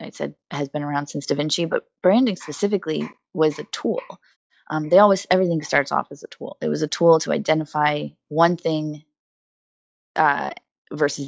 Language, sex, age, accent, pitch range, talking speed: English, female, 20-39, American, 145-180 Hz, 175 wpm